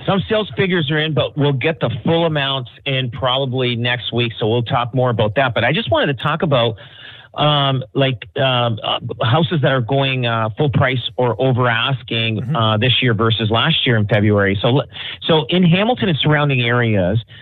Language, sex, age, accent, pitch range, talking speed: English, male, 40-59, American, 115-140 Hz, 195 wpm